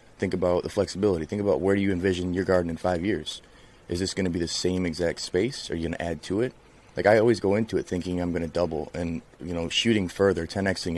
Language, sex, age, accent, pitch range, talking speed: English, male, 30-49, American, 85-100 Hz, 250 wpm